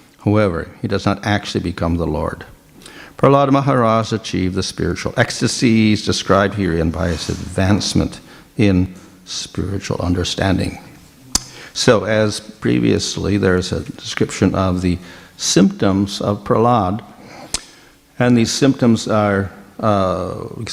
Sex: male